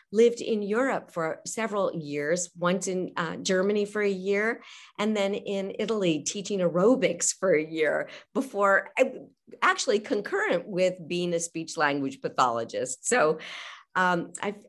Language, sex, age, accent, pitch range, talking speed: English, female, 50-69, American, 170-235 Hz, 140 wpm